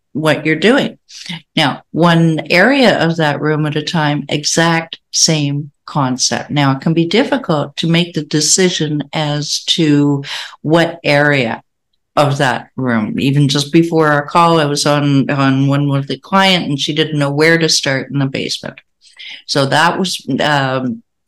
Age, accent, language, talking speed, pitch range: 60-79, American, English, 165 wpm, 150-195 Hz